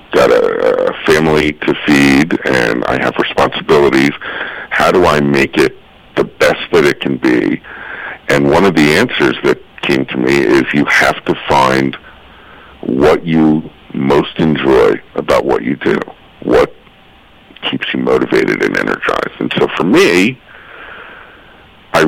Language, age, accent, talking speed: English, 60-79, American, 145 wpm